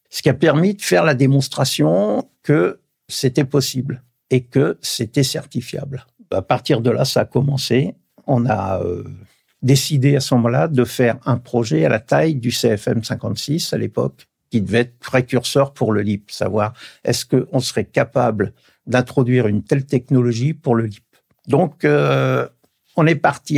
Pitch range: 115-145 Hz